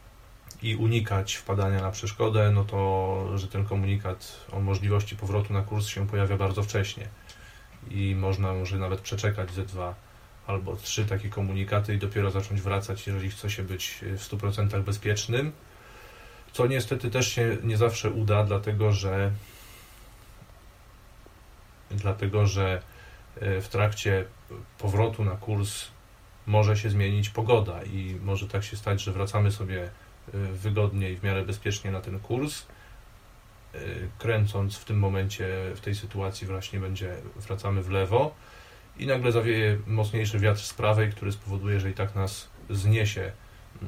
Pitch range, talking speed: 95-110 Hz, 140 wpm